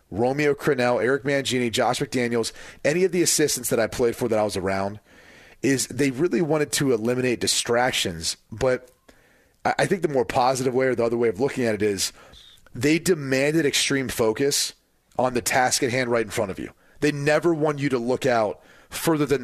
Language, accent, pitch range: English, American, 115-145 Hz